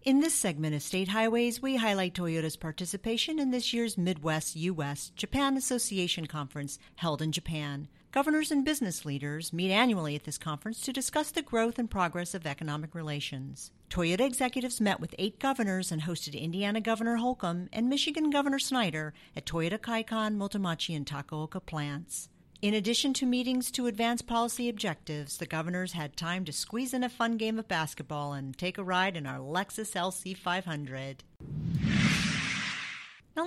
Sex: female